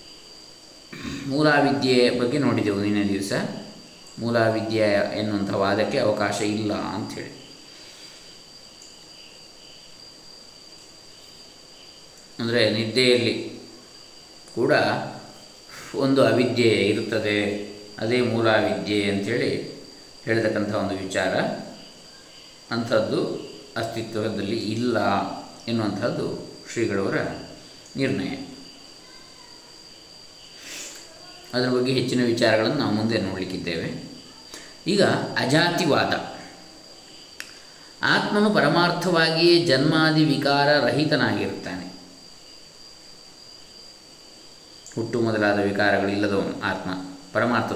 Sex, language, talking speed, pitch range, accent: male, Kannada, 60 wpm, 105-140 Hz, native